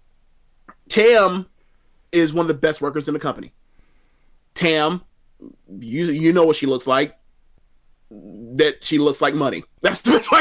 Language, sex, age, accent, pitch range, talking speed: English, male, 30-49, American, 140-185 Hz, 155 wpm